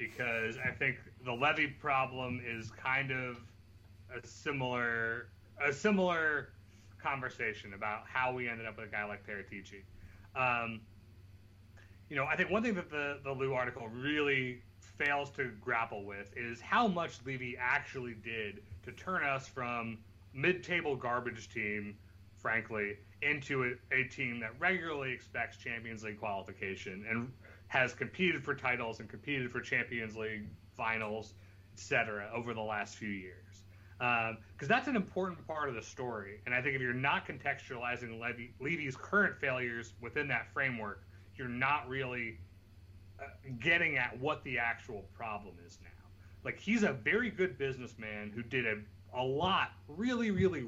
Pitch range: 100-135 Hz